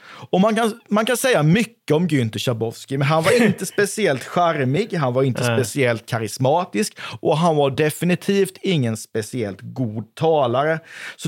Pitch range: 130-185 Hz